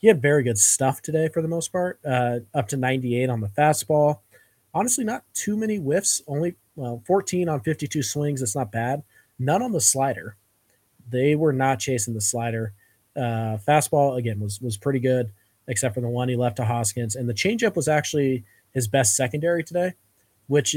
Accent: American